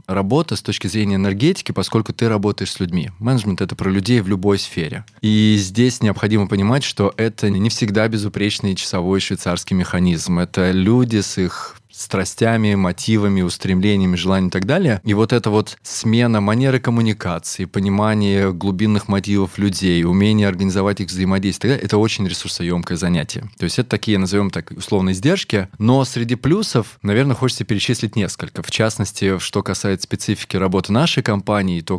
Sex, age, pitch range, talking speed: male, 20-39, 95-110 Hz, 160 wpm